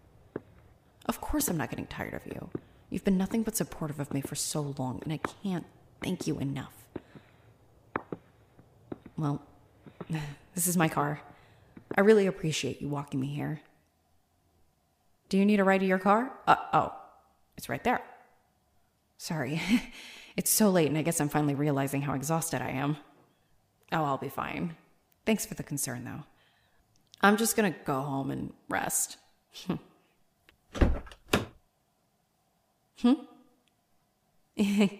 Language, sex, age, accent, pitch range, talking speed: English, female, 30-49, American, 140-200 Hz, 135 wpm